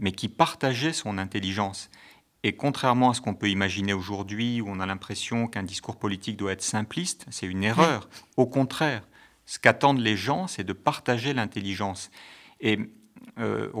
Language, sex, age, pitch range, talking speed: French, male, 50-69, 100-130 Hz, 165 wpm